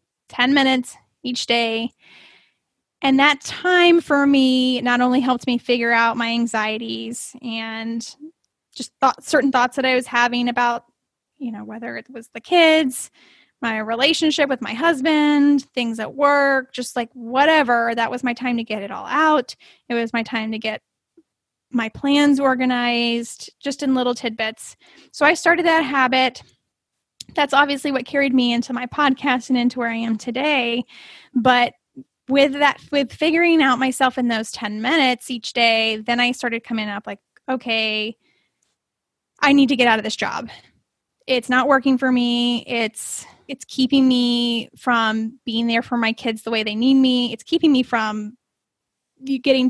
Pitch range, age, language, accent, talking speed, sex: 235-280 Hz, 10-29, English, American, 170 wpm, female